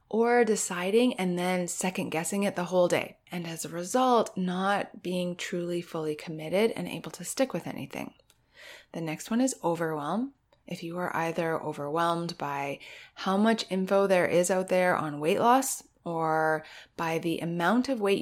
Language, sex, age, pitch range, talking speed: English, female, 30-49, 165-210 Hz, 170 wpm